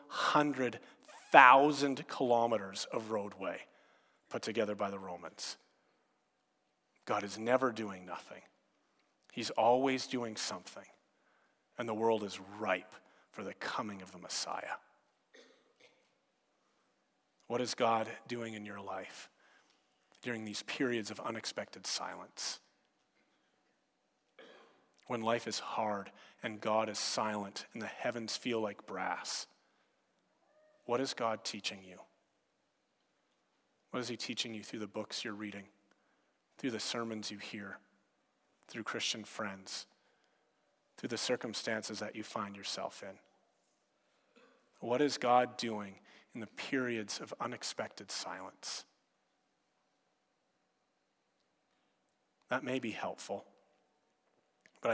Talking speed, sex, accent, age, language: 110 wpm, male, American, 40-59, English